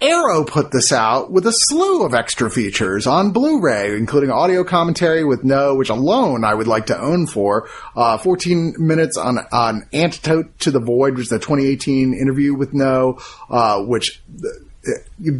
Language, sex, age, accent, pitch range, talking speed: English, male, 30-49, American, 120-160 Hz, 175 wpm